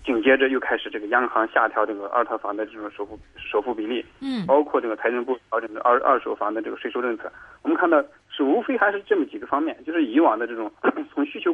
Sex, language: male, Chinese